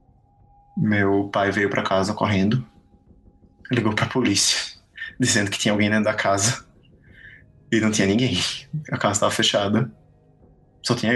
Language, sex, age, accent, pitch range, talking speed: Portuguese, male, 20-39, Brazilian, 100-115 Hz, 140 wpm